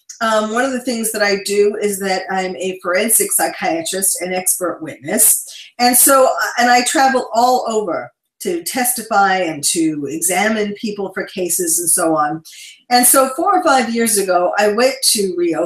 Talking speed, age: 175 wpm, 50-69